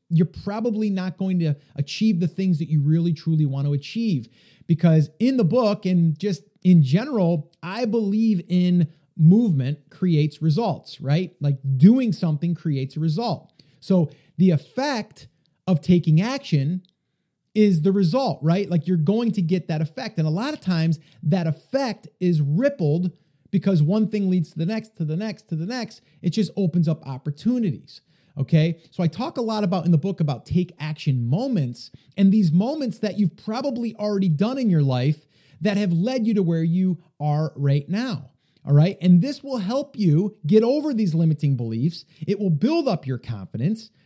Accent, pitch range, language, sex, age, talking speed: American, 155-205 Hz, English, male, 30-49, 180 wpm